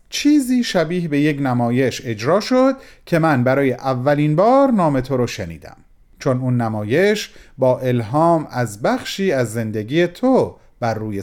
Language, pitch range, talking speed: Persian, 130-195 Hz, 150 wpm